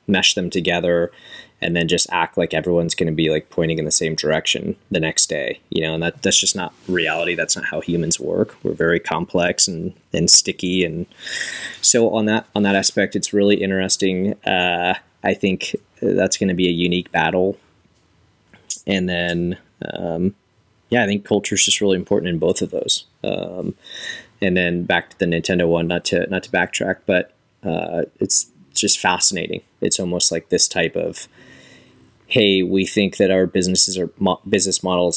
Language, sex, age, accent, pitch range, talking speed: English, male, 20-39, American, 85-95 Hz, 190 wpm